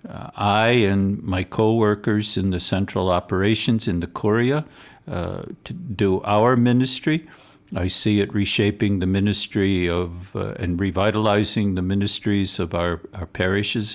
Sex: male